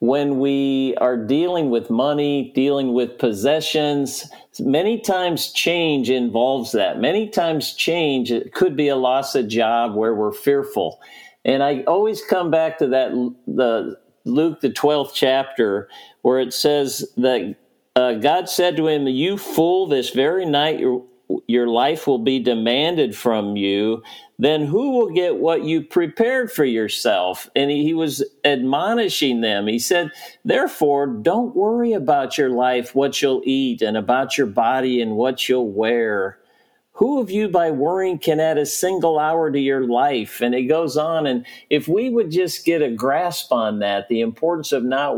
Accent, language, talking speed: American, English, 165 wpm